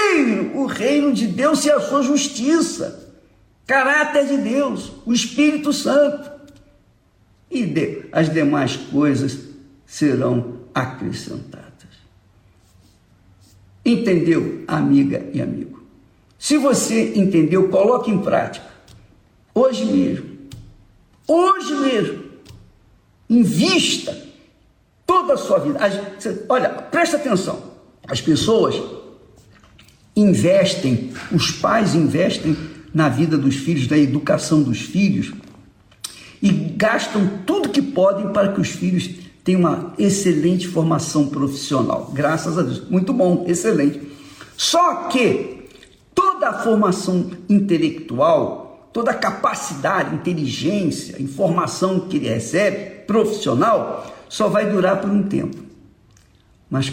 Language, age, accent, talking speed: Portuguese, 60-79, Brazilian, 105 wpm